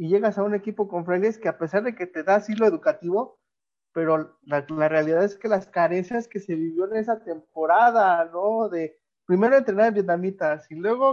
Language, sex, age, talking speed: Spanish, male, 30-49, 210 wpm